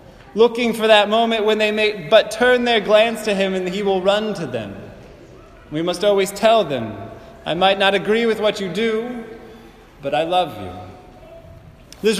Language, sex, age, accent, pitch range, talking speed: English, male, 20-39, American, 200-230 Hz, 180 wpm